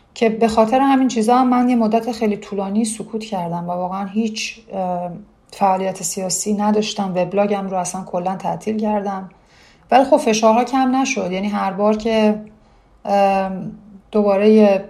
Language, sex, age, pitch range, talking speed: Persian, female, 30-49, 185-210 Hz, 135 wpm